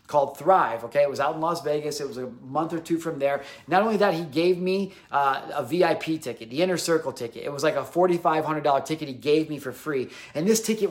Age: 30-49